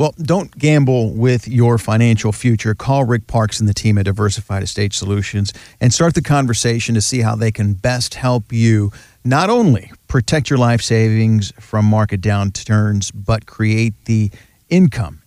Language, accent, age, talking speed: English, American, 40-59, 165 wpm